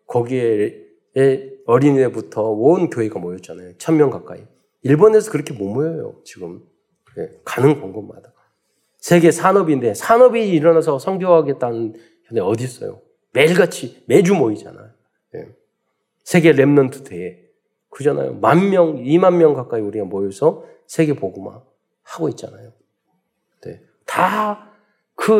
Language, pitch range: Korean, 130-205 Hz